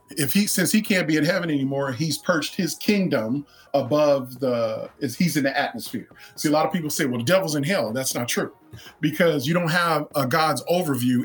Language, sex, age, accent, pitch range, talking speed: English, male, 40-59, American, 130-160 Hz, 215 wpm